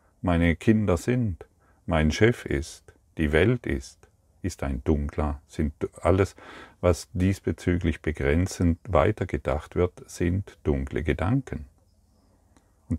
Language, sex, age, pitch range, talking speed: German, male, 50-69, 75-100 Hz, 105 wpm